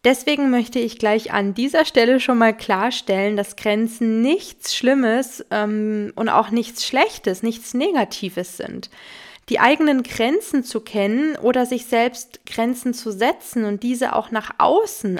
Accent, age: German, 20-39